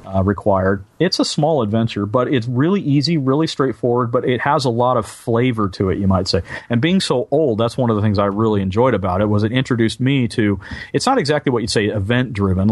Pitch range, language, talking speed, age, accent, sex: 95-120 Hz, English, 235 wpm, 40-59, American, male